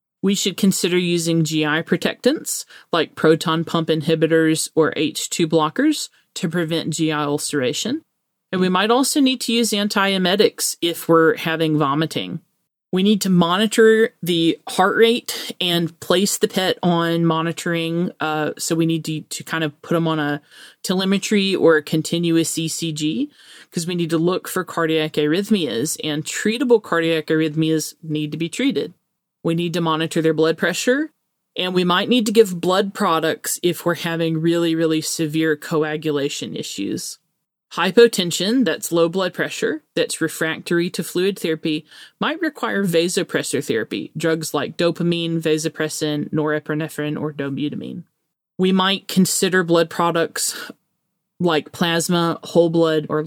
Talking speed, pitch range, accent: 145 wpm, 160-190 Hz, American